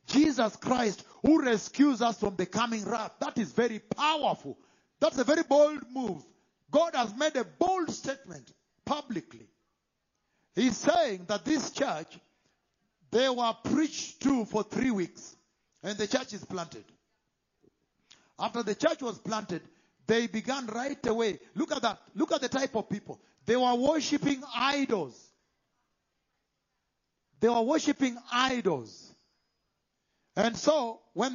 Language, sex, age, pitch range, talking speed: English, male, 50-69, 210-275 Hz, 135 wpm